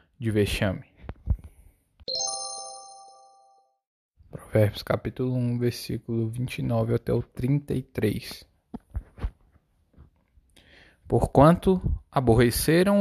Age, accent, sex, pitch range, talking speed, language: 10-29, Brazilian, male, 100-140 Hz, 55 wpm, Portuguese